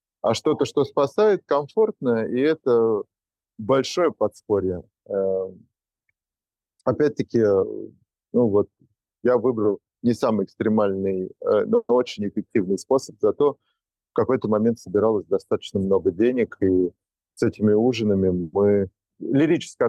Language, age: Russian, 30-49